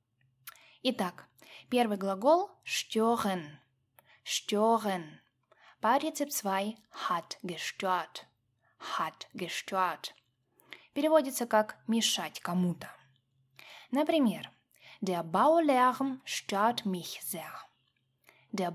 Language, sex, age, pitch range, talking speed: Russian, female, 10-29, 175-235 Hz, 60 wpm